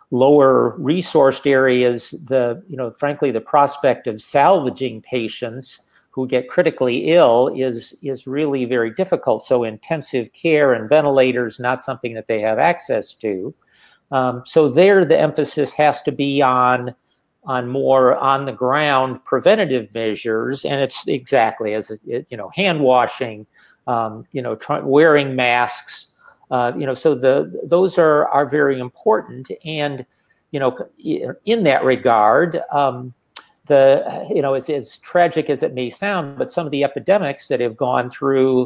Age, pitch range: 50-69, 125-145 Hz